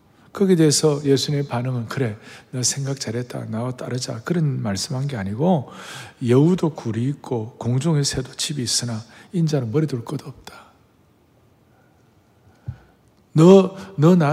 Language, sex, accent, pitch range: Korean, male, native, 120-170 Hz